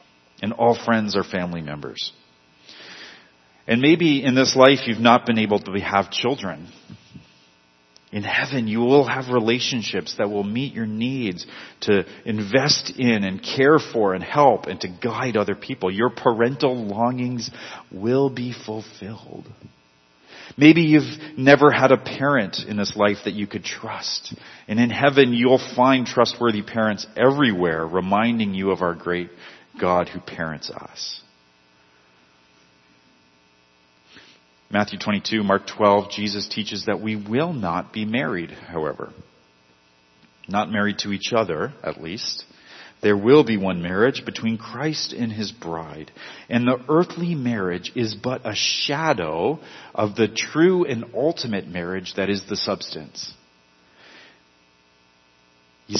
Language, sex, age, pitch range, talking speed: English, male, 40-59, 80-120 Hz, 135 wpm